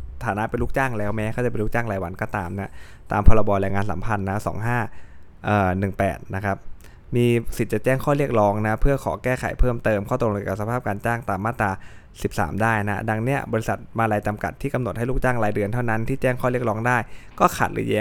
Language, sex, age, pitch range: Thai, male, 20-39, 105-125 Hz